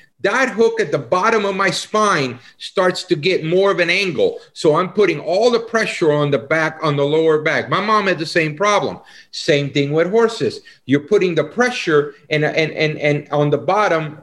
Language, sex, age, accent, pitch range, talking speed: English, male, 50-69, American, 145-215 Hz, 195 wpm